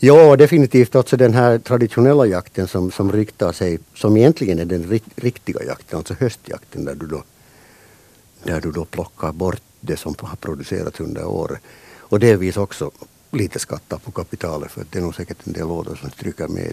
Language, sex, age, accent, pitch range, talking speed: Finnish, male, 60-79, native, 80-110 Hz, 185 wpm